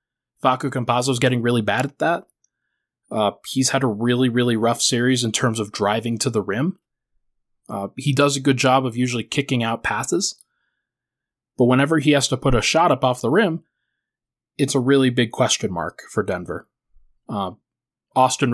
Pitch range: 115-135 Hz